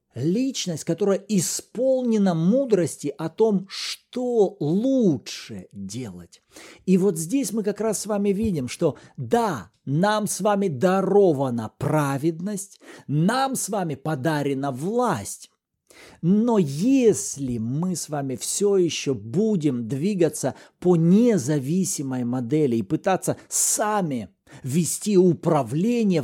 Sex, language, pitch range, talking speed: male, Russian, 145-200 Hz, 105 wpm